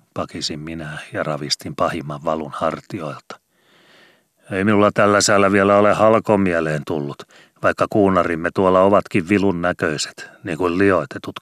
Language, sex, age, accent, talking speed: Finnish, male, 40-59, native, 125 wpm